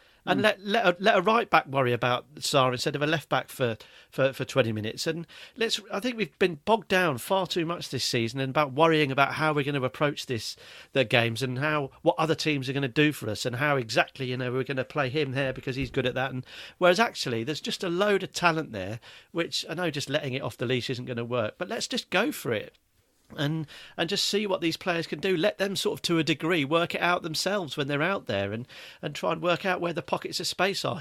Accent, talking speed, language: British, 270 wpm, English